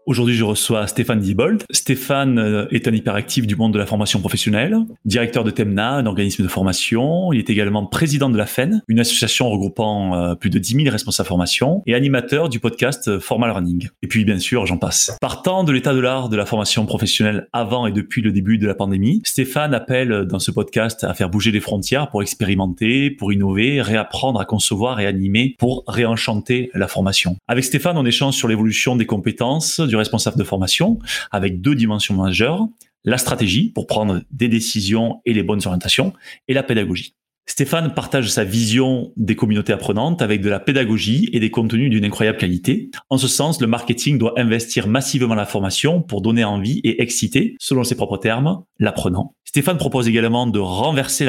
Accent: French